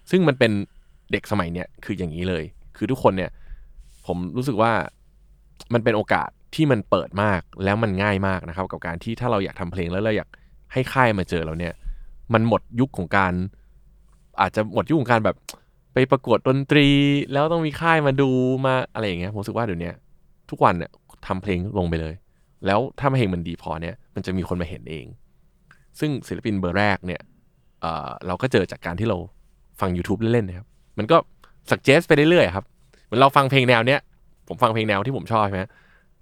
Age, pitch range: 20-39, 90-125 Hz